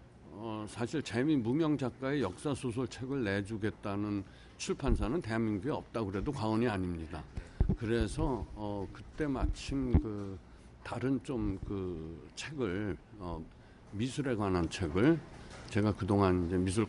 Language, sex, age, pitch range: Korean, male, 60-79, 95-120 Hz